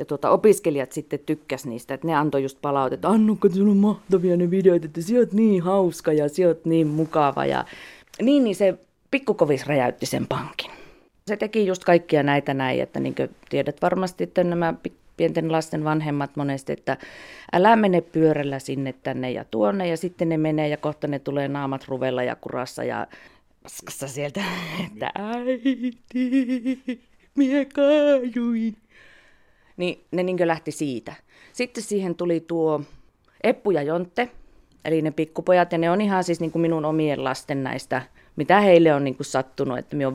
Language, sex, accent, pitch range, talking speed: Finnish, female, native, 140-195 Hz, 155 wpm